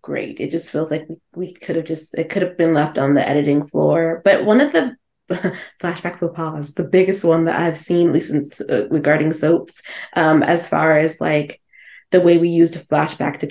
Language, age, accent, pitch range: English, 20-39, American, 165-215 Hz